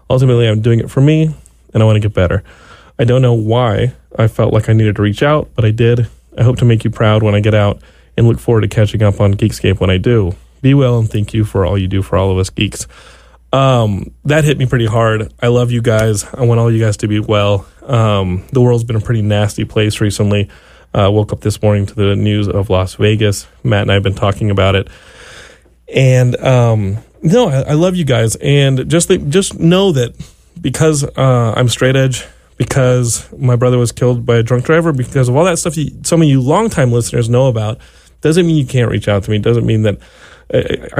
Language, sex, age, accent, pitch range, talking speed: English, male, 20-39, American, 105-130 Hz, 240 wpm